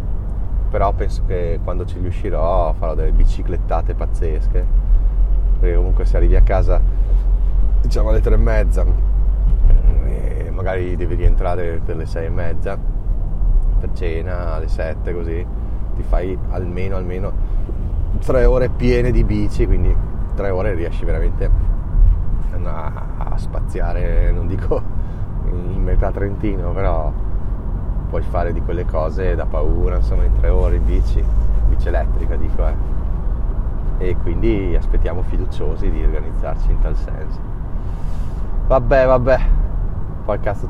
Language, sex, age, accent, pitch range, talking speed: Italian, male, 30-49, native, 85-100 Hz, 125 wpm